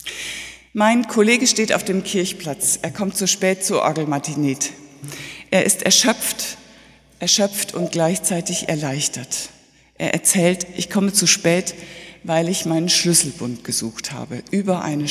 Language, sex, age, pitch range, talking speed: German, female, 60-79, 160-210 Hz, 130 wpm